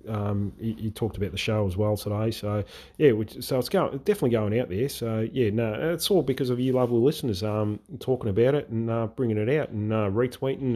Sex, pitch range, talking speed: male, 100-125 Hz, 225 wpm